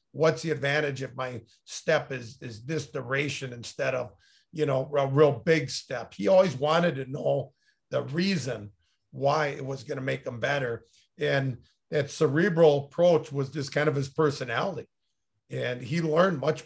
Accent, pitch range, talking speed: American, 135-160 Hz, 165 wpm